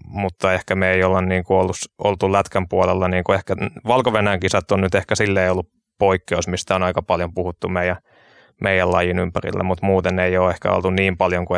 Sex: male